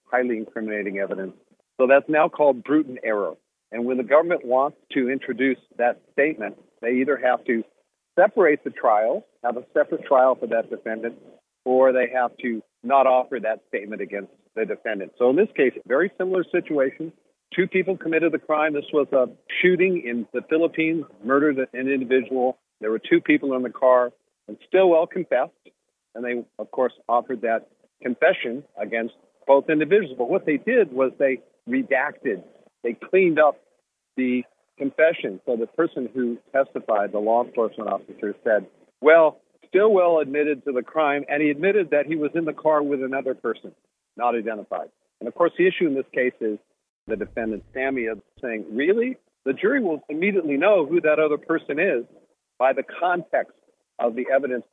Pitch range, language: 120-160 Hz, English